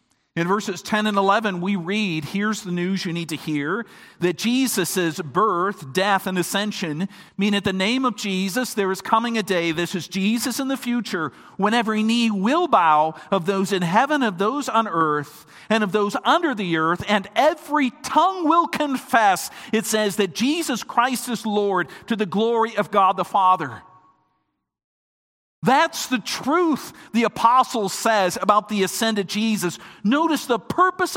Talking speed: 170 wpm